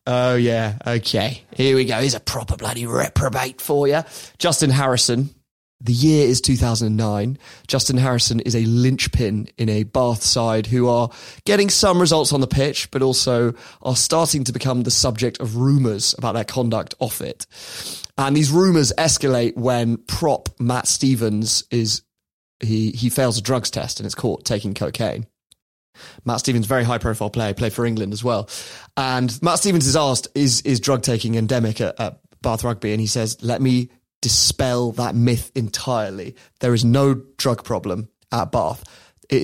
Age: 20-39